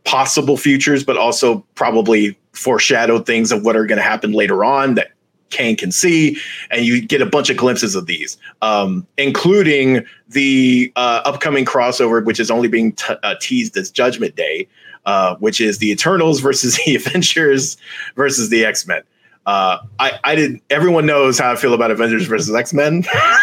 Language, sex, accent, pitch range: English, male, American, 120-170 Hz